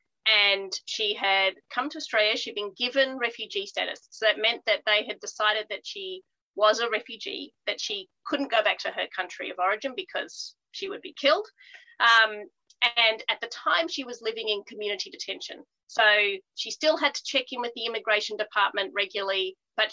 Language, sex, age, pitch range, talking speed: English, female, 30-49, 200-255 Hz, 185 wpm